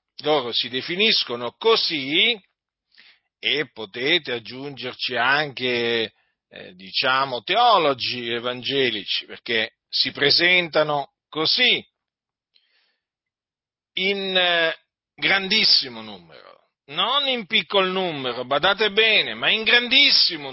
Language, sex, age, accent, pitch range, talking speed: Italian, male, 40-59, native, 140-205 Hz, 85 wpm